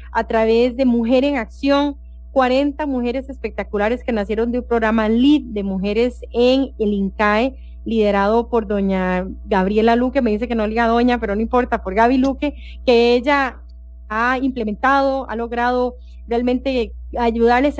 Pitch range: 225-275 Hz